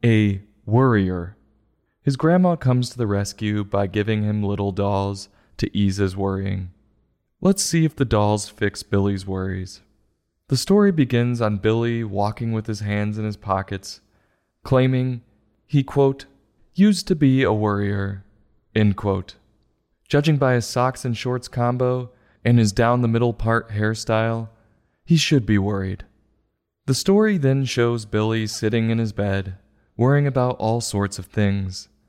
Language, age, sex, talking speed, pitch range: English, 20-39, male, 150 wpm, 100-130 Hz